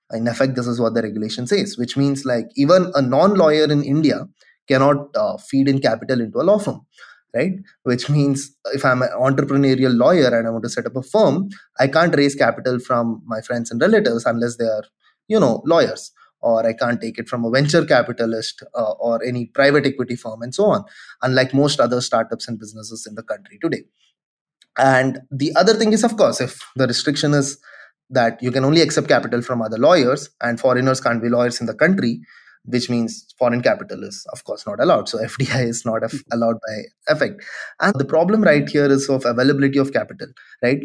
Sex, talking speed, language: male, 205 wpm, English